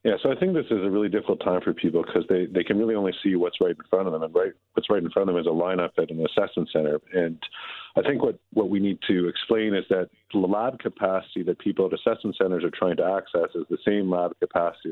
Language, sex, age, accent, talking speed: English, male, 40-59, American, 275 wpm